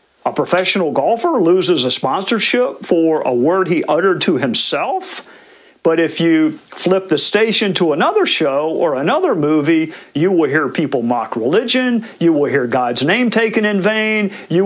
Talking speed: 165 wpm